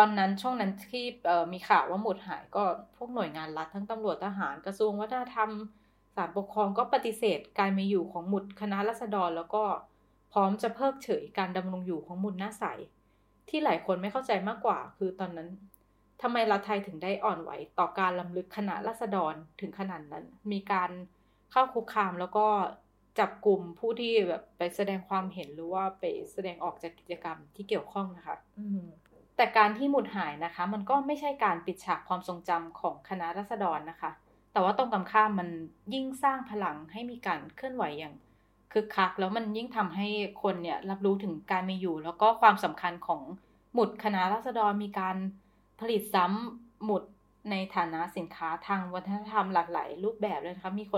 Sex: female